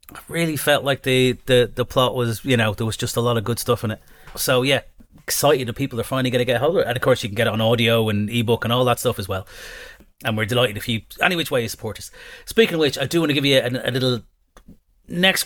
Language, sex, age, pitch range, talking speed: English, male, 30-49, 105-130 Hz, 295 wpm